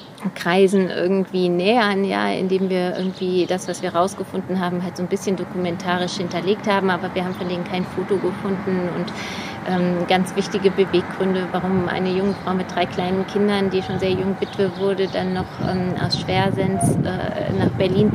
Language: German